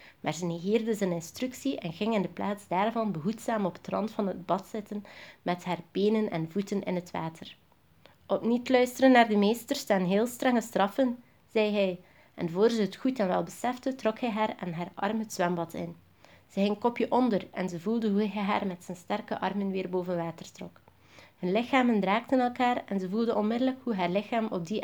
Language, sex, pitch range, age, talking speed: Dutch, female, 180-225 Hz, 30-49, 210 wpm